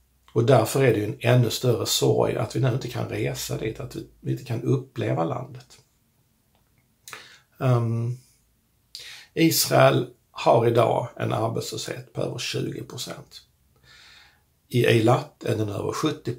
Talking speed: 135 wpm